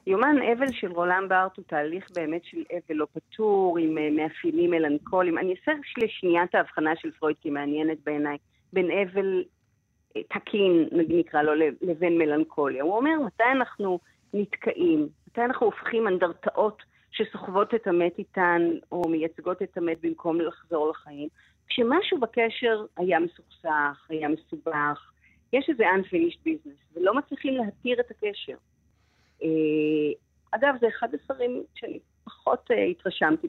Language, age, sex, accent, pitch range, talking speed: Hebrew, 30-49, female, native, 160-235 Hz, 140 wpm